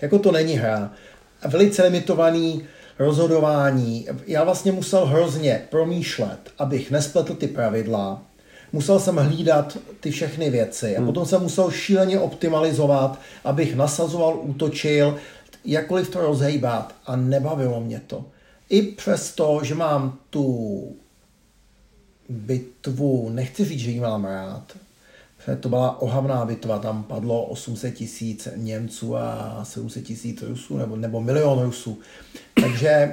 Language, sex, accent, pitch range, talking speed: Czech, male, native, 120-165 Hz, 125 wpm